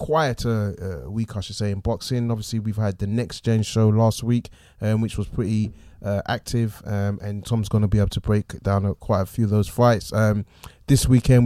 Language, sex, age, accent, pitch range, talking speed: English, male, 20-39, British, 110-130 Hz, 225 wpm